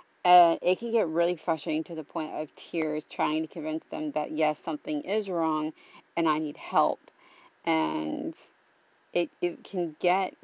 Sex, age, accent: female, 30-49, American